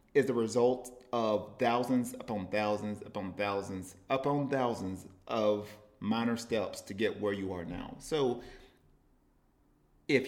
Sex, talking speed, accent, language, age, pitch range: male, 130 wpm, American, English, 40-59, 105-135 Hz